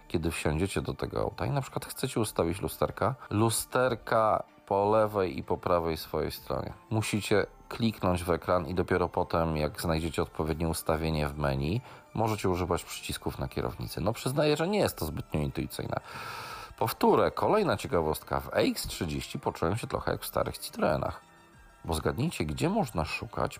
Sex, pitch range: male, 80-110 Hz